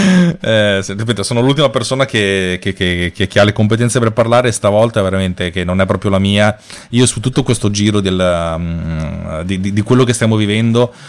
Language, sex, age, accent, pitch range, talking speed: Italian, male, 30-49, native, 95-110 Hz, 200 wpm